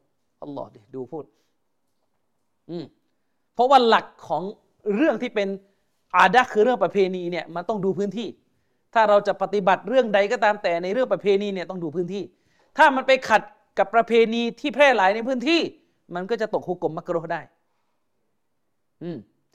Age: 30-49